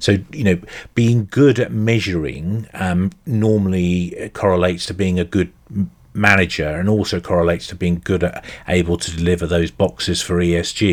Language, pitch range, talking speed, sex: English, 85-95 Hz, 160 wpm, male